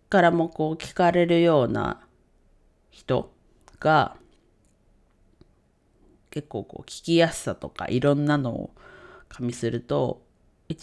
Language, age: Japanese, 40-59